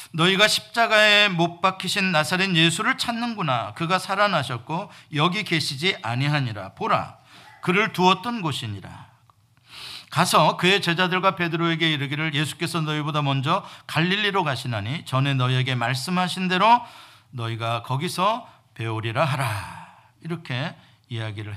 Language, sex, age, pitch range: Korean, male, 50-69, 125-190 Hz